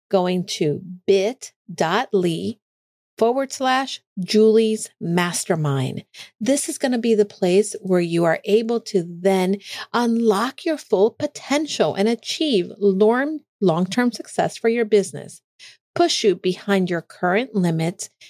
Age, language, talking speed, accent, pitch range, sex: 50-69, English, 120 wpm, American, 185-235 Hz, female